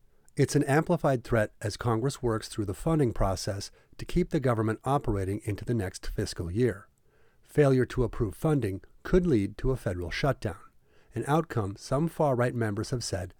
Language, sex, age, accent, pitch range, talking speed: English, male, 40-59, American, 105-135 Hz, 170 wpm